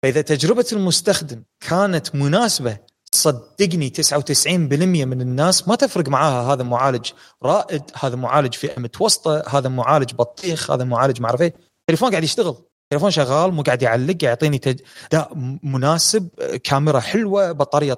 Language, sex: Arabic, male